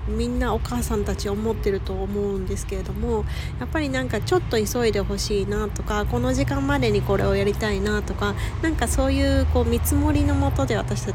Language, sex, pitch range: Japanese, female, 95-125 Hz